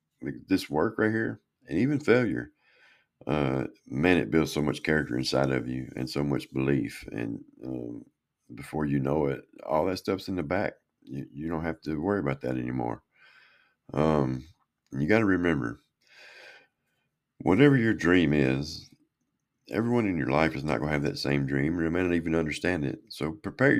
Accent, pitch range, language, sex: American, 70-90 Hz, English, male